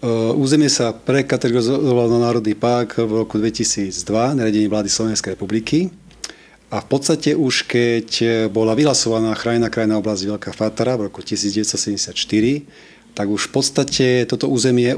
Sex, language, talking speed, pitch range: male, Slovak, 135 wpm, 105-120 Hz